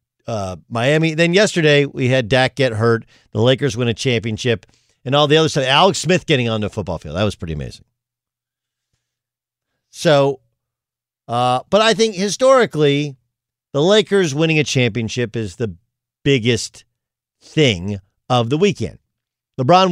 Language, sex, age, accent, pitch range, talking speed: English, male, 50-69, American, 120-160 Hz, 150 wpm